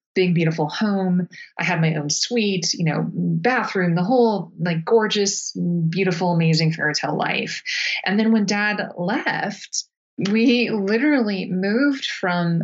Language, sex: English, female